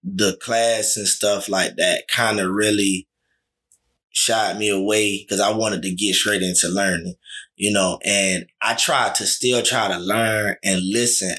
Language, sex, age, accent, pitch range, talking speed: English, male, 20-39, American, 100-125 Hz, 170 wpm